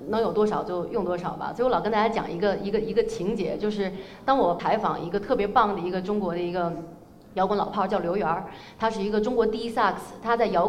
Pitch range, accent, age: 185-240 Hz, native, 20-39